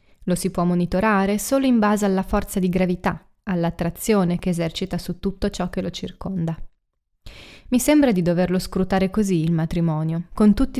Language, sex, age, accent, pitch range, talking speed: Italian, female, 20-39, native, 175-210 Hz, 165 wpm